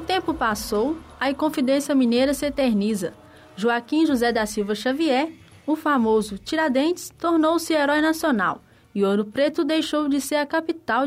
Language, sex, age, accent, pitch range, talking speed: Portuguese, female, 10-29, Brazilian, 215-285 Hz, 145 wpm